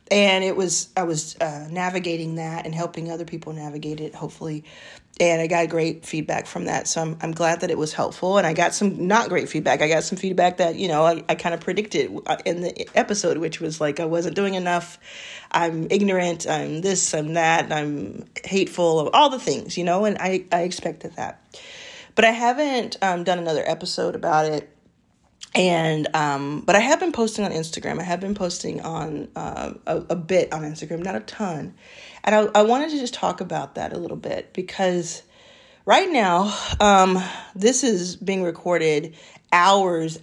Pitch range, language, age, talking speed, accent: 160-195 Hz, English, 40-59, 195 wpm, American